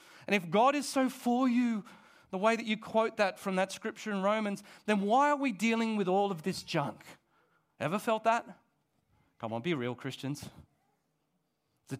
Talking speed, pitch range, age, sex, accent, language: 185 wpm, 160-220 Hz, 40-59, male, Australian, English